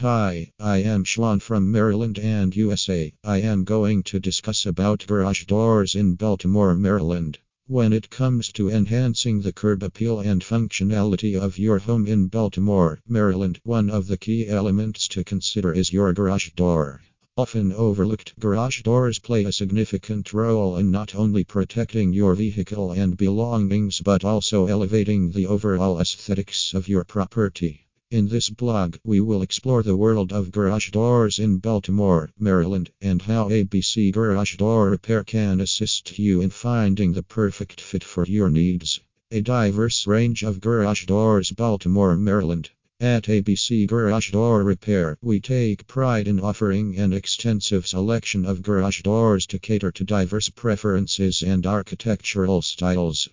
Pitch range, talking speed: 95-110 Hz, 150 wpm